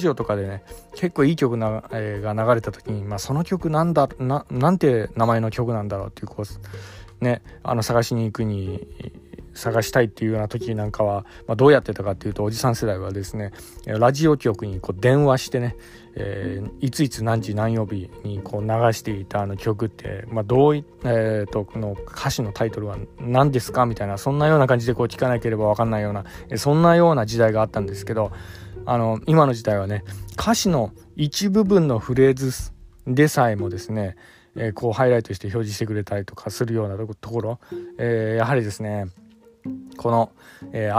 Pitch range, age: 105-125 Hz, 20-39